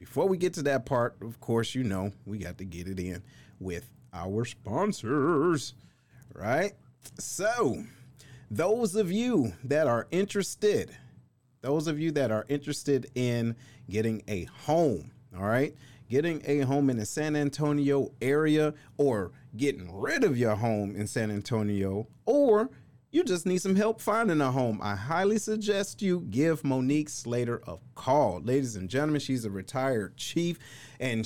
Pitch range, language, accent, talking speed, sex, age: 115-150 Hz, English, American, 155 wpm, male, 40-59